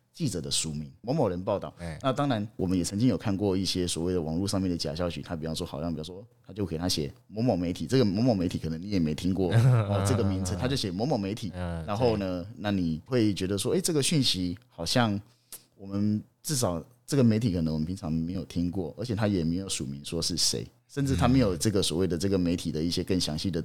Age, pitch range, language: 30-49, 85-120 Hz, Chinese